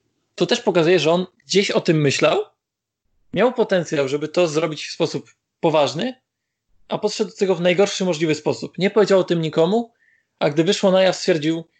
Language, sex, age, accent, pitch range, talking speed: Polish, male, 20-39, native, 150-190 Hz, 185 wpm